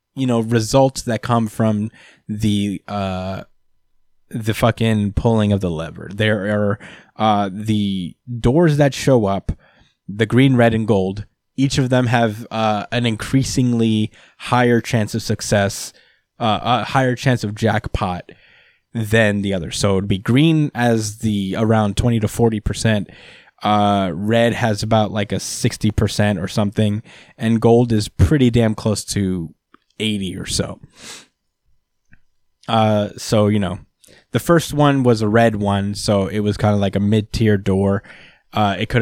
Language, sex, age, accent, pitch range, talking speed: English, male, 20-39, American, 100-120 Hz, 155 wpm